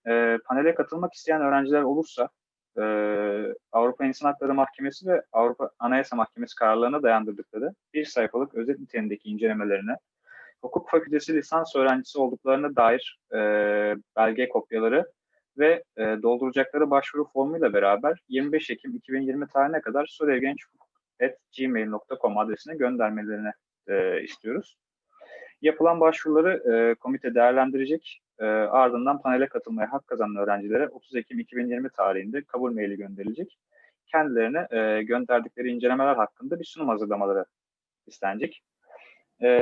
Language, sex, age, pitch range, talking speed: Turkish, male, 30-49, 115-145 Hz, 115 wpm